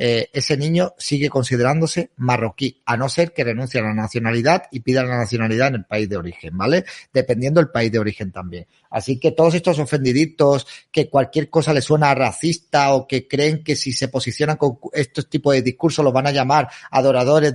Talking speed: 200 wpm